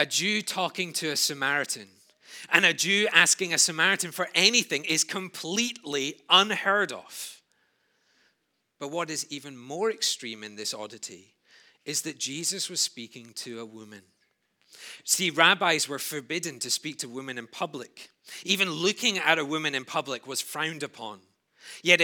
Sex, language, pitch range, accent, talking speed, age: male, English, 130-180 Hz, British, 150 wpm, 30-49